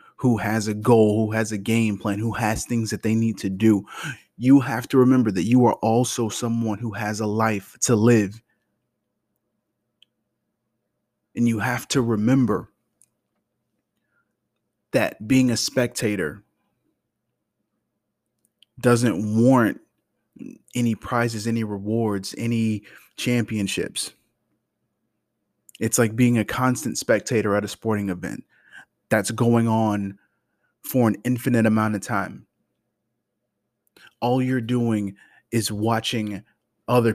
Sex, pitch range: male, 105-120 Hz